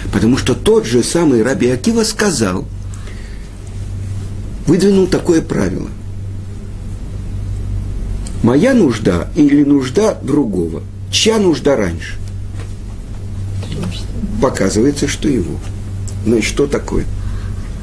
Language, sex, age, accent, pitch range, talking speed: Russian, male, 50-69, native, 100-135 Hz, 90 wpm